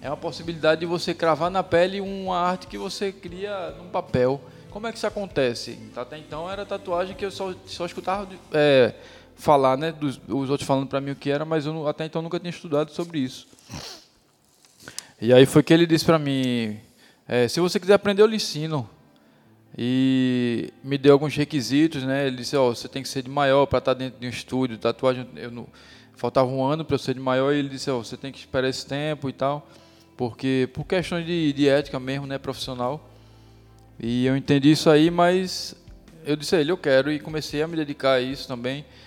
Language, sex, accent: Portuguese, male, Brazilian